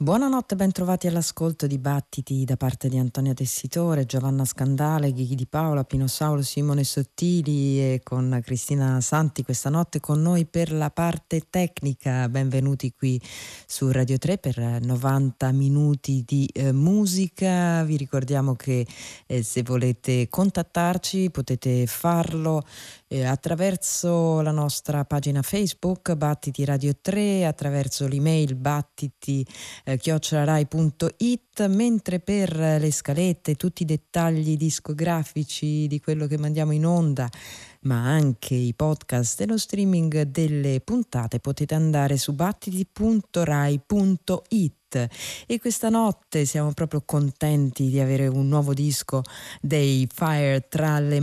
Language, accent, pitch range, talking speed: Italian, native, 135-170 Hz, 125 wpm